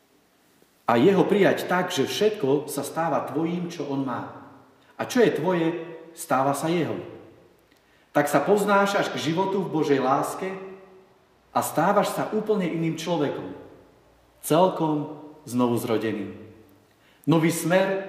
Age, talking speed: 40-59, 125 wpm